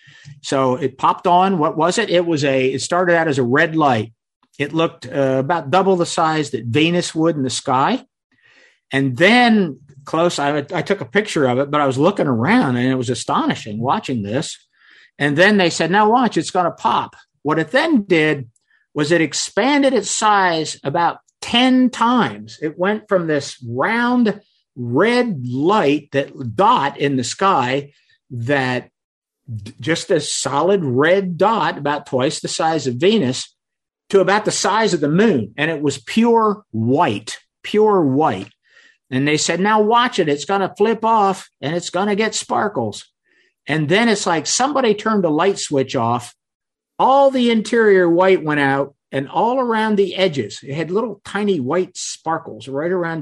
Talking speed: 175 wpm